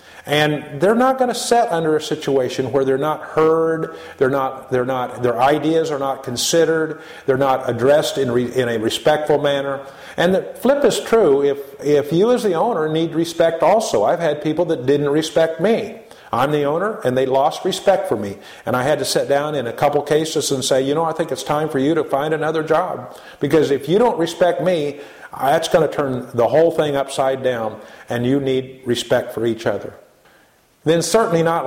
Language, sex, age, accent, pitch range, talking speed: English, male, 50-69, American, 130-155 Hz, 210 wpm